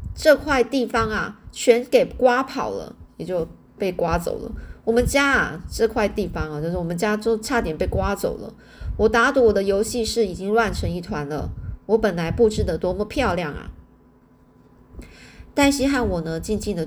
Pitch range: 195-235 Hz